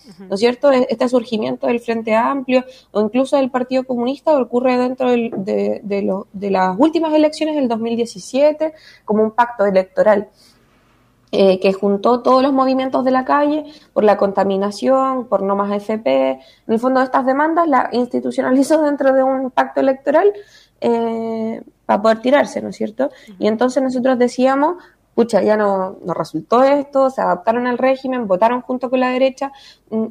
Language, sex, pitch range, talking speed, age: Spanish, female, 205-265 Hz, 170 wpm, 20-39